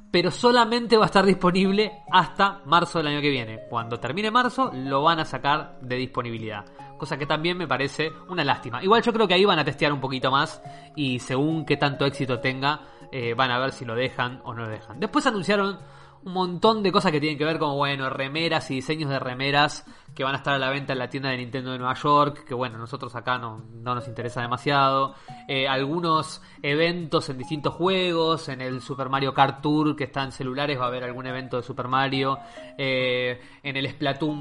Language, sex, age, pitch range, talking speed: Spanish, male, 20-39, 135-170 Hz, 220 wpm